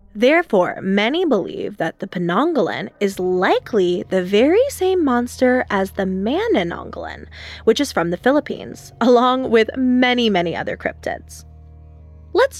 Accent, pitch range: American, 180-255 Hz